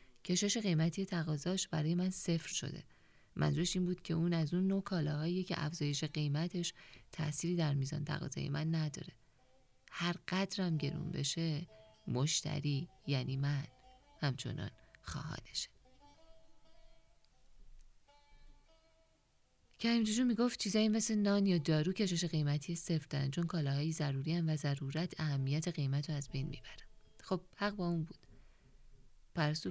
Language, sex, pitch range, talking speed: Persian, female, 145-175 Hz, 125 wpm